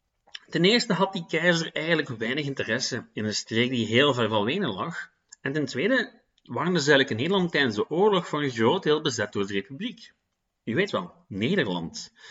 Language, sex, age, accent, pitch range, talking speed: Dutch, male, 30-49, Dutch, 115-190 Hz, 190 wpm